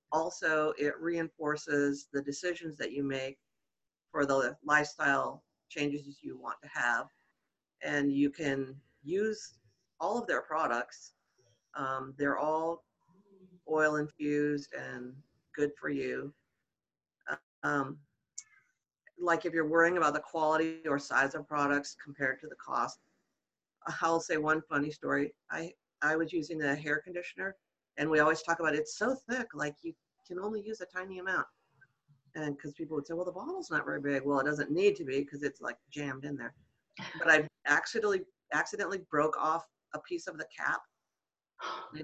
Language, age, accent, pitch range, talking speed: English, 50-69, American, 145-180 Hz, 160 wpm